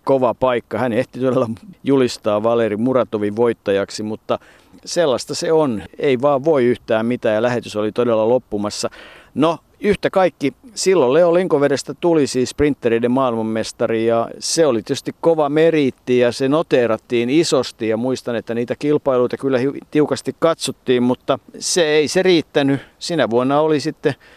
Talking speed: 150 wpm